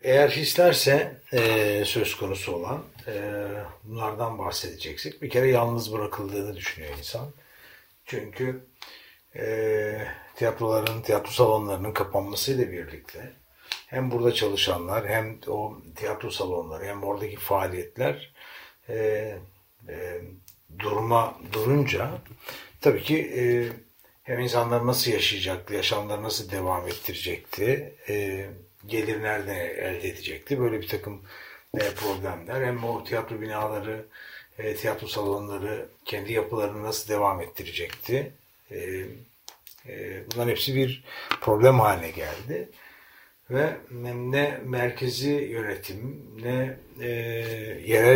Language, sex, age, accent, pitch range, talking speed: Turkish, male, 60-79, native, 105-125 Hz, 100 wpm